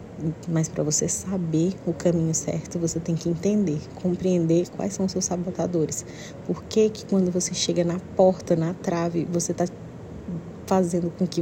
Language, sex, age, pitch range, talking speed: Portuguese, female, 30-49, 170-190 Hz, 170 wpm